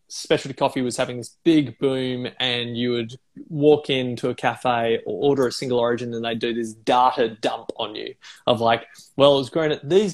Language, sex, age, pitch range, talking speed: English, male, 20-39, 125-160 Hz, 205 wpm